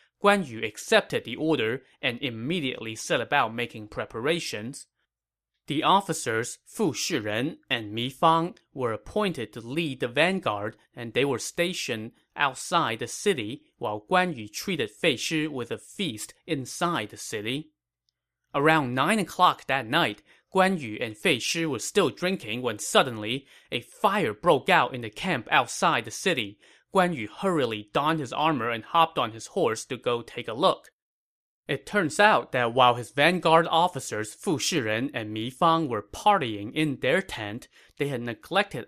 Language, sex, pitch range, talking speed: English, male, 110-165 Hz, 160 wpm